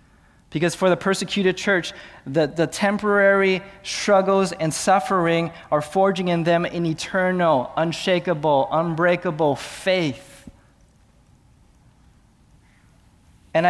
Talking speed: 90 wpm